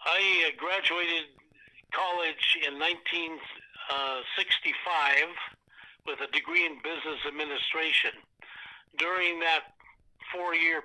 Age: 60-79